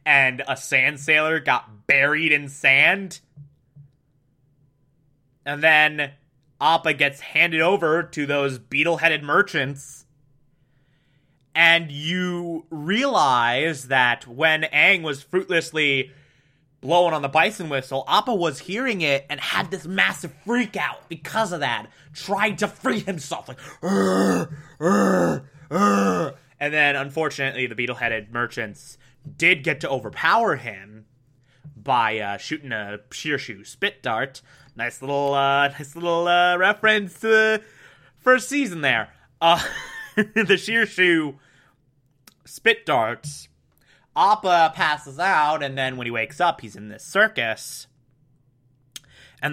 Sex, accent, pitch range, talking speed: male, American, 130-165 Hz, 120 wpm